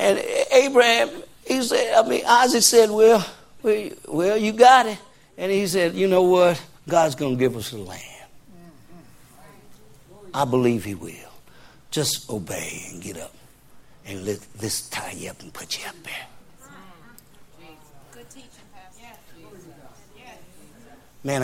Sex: male